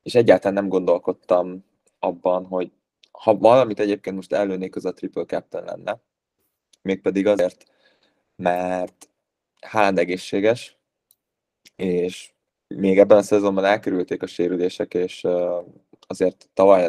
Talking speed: 115 wpm